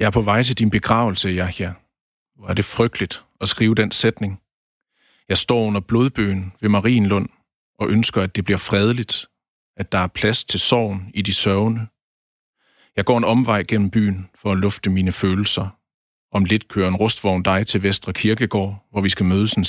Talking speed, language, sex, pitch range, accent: 195 wpm, Danish, male, 95-110 Hz, native